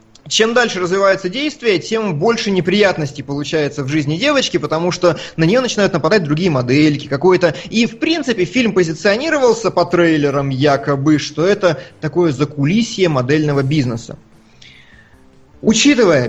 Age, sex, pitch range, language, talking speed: 30-49, male, 150-220 Hz, Russian, 130 wpm